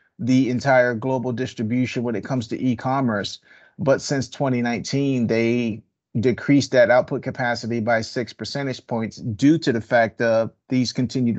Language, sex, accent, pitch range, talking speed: English, male, American, 120-135 Hz, 150 wpm